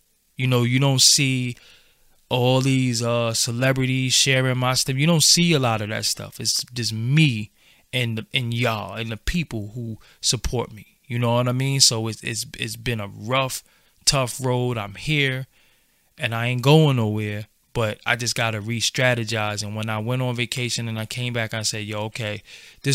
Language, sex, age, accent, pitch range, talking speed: English, male, 20-39, American, 110-130 Hz, 195 wpm